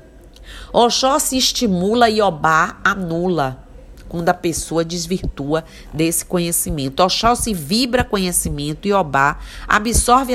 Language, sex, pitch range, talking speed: Portuguese, female, 150-205 Hz, 110 wpm